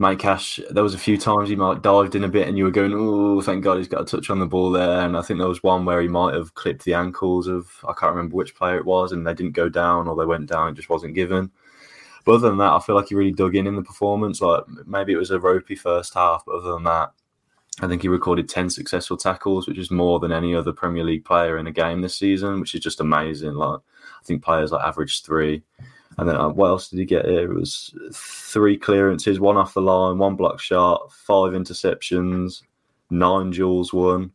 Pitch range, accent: 85-100 Hz, British